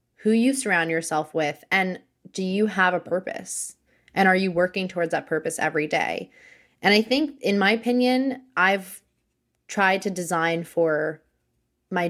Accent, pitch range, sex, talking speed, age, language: American, 160-205 Hz, female, 160 wpm, 20-39, English